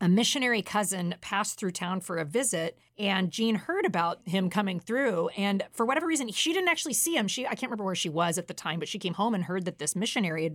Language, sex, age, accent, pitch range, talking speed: English, female, 40-59, American, 175-220 Hz, 255 wpm